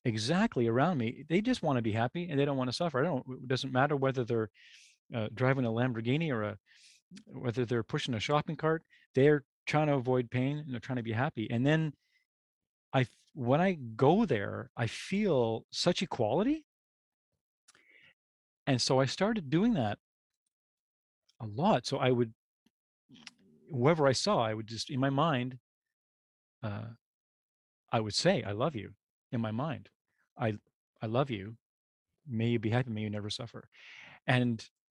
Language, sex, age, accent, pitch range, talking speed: English, male, 40-59, American, 115-155 Hz, 170 wpm